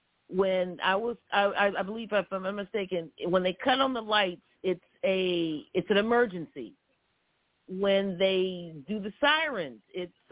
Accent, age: American, 50-69